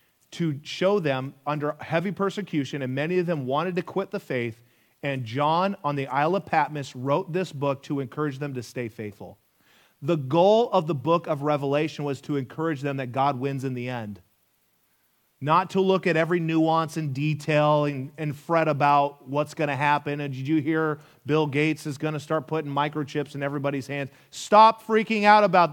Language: English